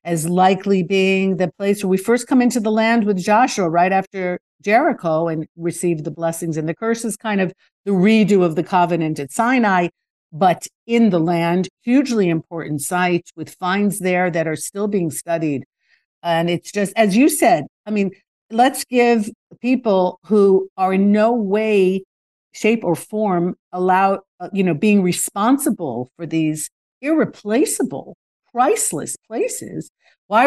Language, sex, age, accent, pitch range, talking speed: English, female, 50-69, American, 170-225 Hz, 155 wpm